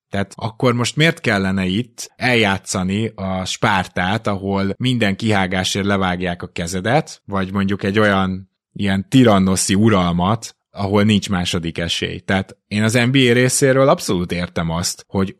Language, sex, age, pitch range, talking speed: Hungarian, male, 20-39, 90-110 Hz, 135 wpm